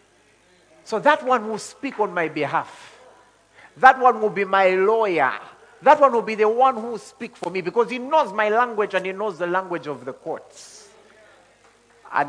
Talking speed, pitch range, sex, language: 190 wpm, 190-255 Hz, male, English